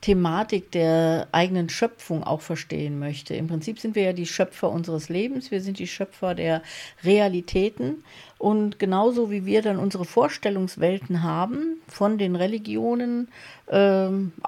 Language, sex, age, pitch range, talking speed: German, female, 40-59, 175-210 Hz, 140 wpm